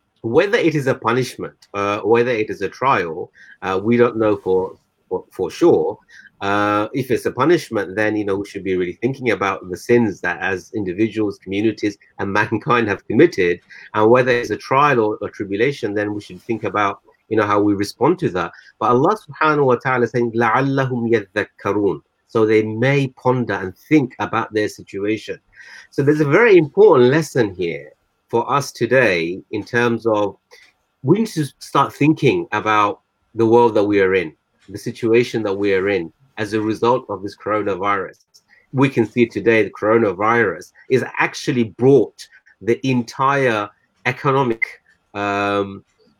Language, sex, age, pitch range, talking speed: English, male, 30-49, 105-135 Hz, 170 wpm